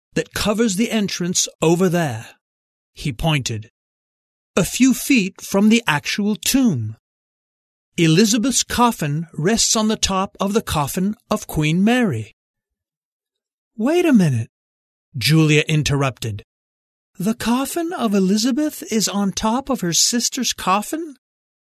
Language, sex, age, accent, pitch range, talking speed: English, male, 40-59, American, 150-230 Hz, 120 wpm